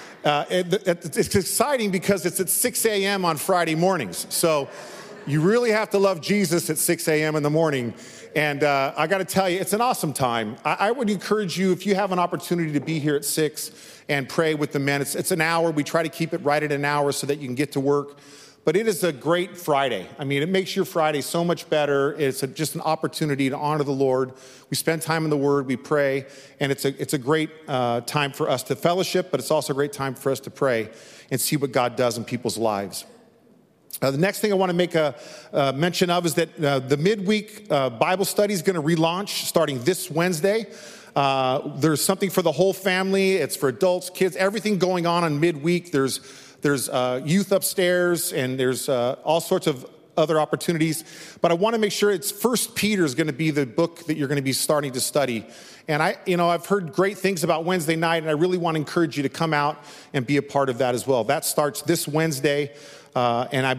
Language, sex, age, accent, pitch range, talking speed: English, male, 40-59, American, 140-180 Hz, 235 wpm